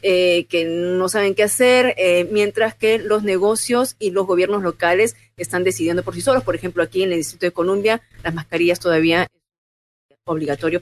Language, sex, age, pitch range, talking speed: Spanish, female, 40-59, 155-195 Hz, 185 wpm